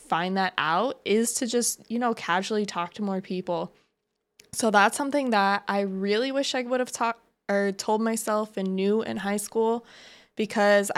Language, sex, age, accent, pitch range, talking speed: English, female, 20-39, American, 190-230 Hz, 180 wpm